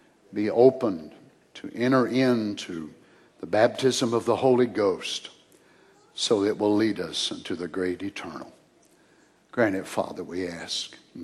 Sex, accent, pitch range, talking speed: male, American, 125-155 Hz, 140 wpm